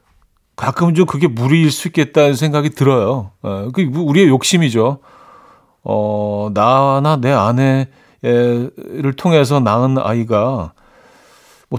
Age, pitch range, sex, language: 40-59, 110-160 Hz, male, Korean